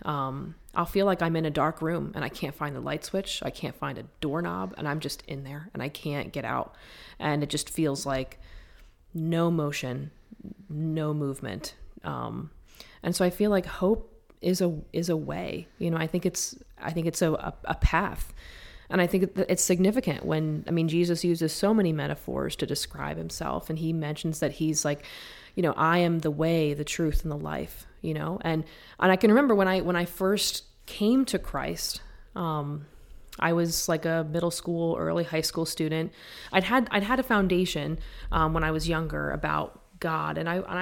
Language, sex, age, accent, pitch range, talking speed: English, female, 30-49, American, 150-180 Hz, 205 wpm